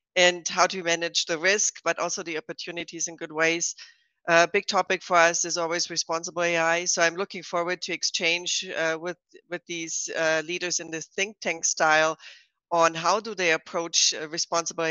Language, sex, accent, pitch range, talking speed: English, female, German, 160-185 Hz, 185 wpm